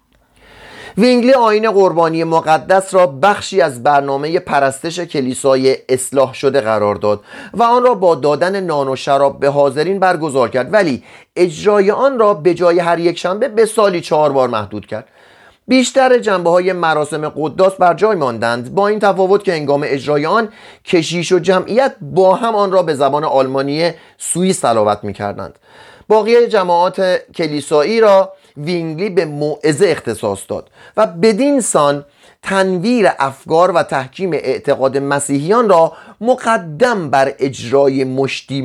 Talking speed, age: 140 wpm, 30-49